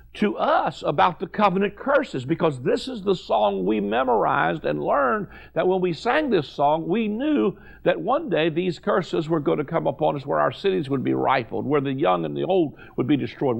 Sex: male